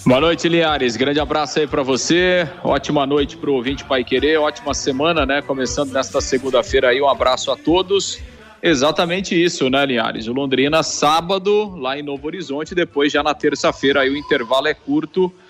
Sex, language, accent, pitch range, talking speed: male, Portuguese, Brazilian, 135-170 Hz, 170 wpm